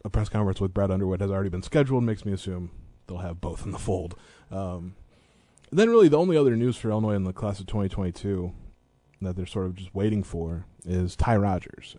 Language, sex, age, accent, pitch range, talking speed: English, male, 20-39, American, 90-110 Hz, 220 wpm